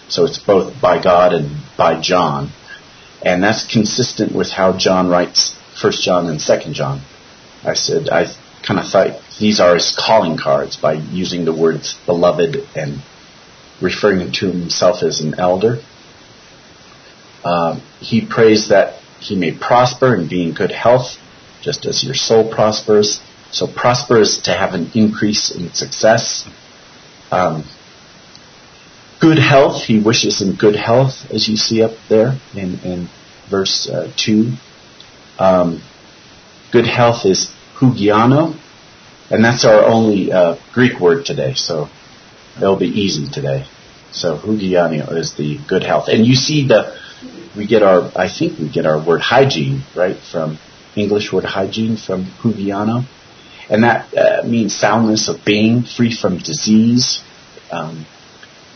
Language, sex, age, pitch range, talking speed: English, male, 40-59, 90-115 Hz, 145 wpm